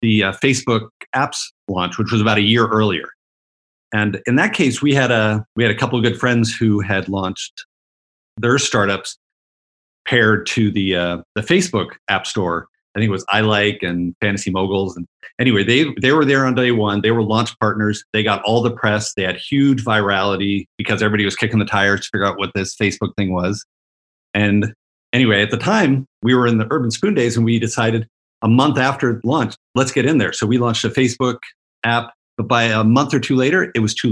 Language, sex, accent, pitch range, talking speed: English, male, American, 100-120 Hz, 215 wpm